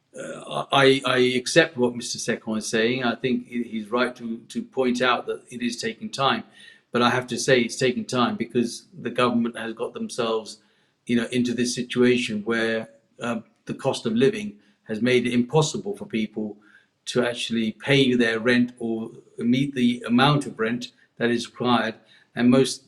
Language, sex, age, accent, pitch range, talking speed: English, male, 50-69, British, 115-140 Hz, 180 wpm